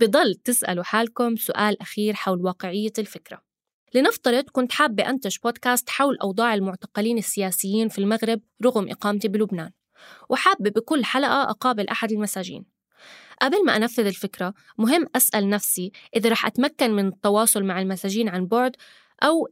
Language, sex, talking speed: Arabic, female, 140 wpm